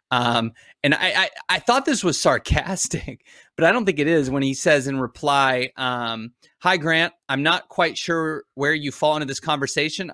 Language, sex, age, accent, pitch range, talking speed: English, male, 30-49, American, 125-155 Hz, 195 wpm